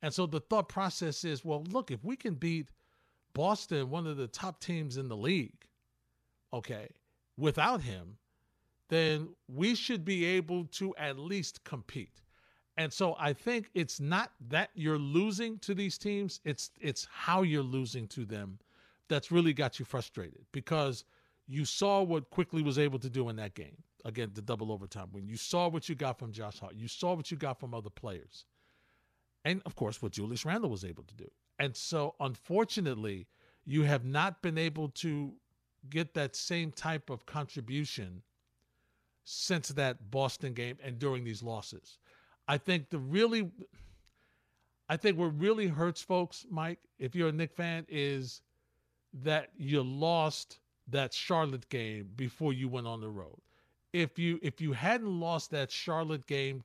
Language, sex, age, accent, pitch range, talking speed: English, male, 50-69, American, 125-170 Hz, 170 wpm